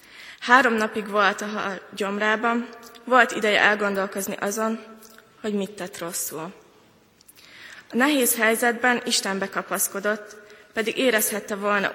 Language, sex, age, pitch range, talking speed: Hungarian, female, 20-39, 195-225 Hz, 105 wpm